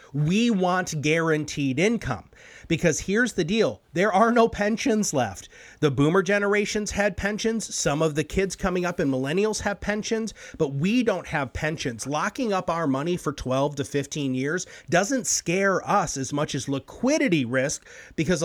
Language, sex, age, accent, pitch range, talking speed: English, male, 30-49, American, 135-195 Hz, 165 wpm